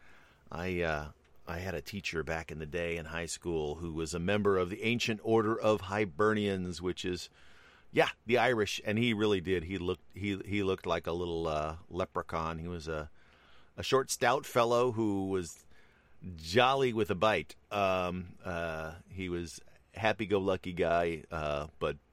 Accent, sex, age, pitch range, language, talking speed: American, male, 40-59, 75-95 Hz, English, 175 wpm